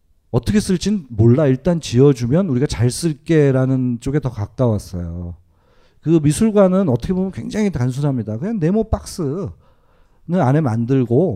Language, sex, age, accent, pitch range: Korean, male, 40-59, native, 120-165 Hz